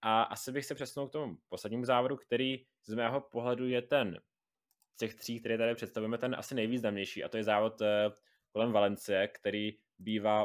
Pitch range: 105-120 Hz